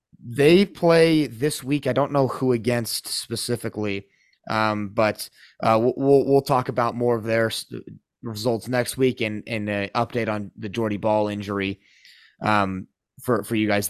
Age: 30-49